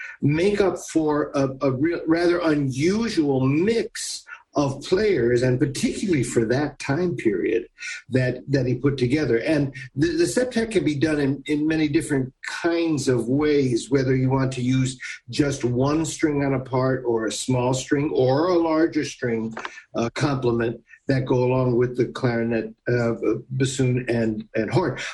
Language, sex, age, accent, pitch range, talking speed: English, male, 60-79, American, 125-160 Hz, 160 wpm